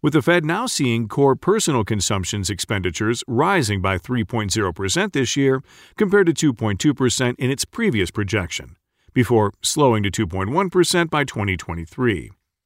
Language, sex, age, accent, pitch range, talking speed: English, male, 40-59, American, 105-150 Hz, 125 wpm